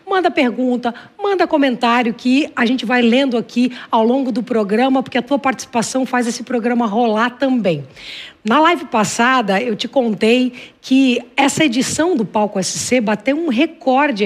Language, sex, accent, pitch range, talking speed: Portuguese, female, Brazilian, 235-285 Hz, 160 wpm